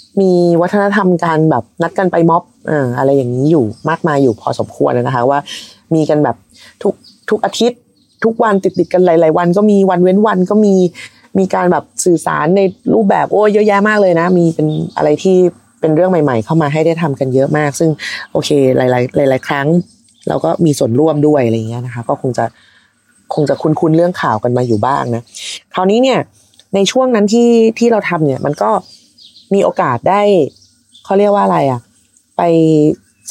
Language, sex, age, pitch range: Thai, female, 20-39, 130-190 Hz